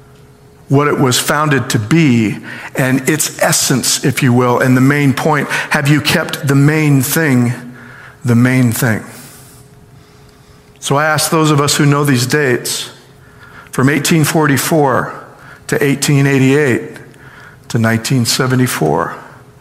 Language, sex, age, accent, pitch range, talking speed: English, male, 50-69, American, 135-165 Hz, 125 wpm